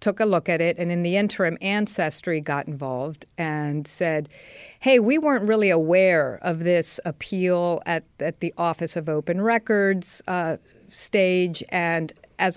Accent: American